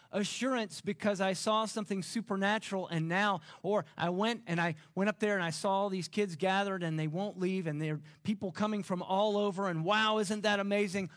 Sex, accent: male, American